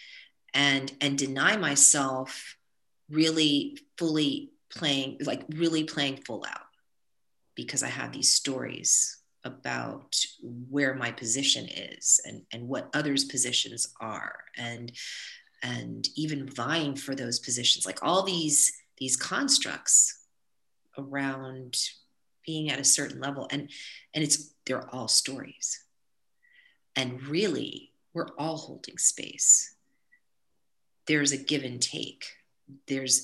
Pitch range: 130-155 Hz